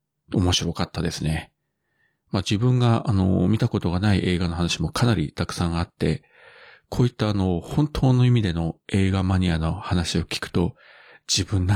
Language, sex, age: Japanese, male, 40-59